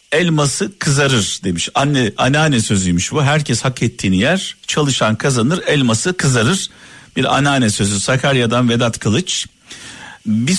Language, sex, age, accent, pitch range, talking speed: Turkish, male, 50-69, native, 115-180 Hz, 125 wpm